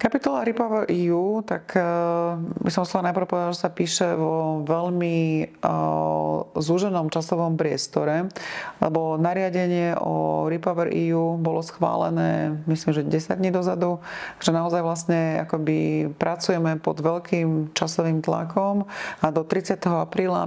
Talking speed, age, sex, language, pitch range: 130 wpm, 30-49, female, Slovak, 160-180 Hz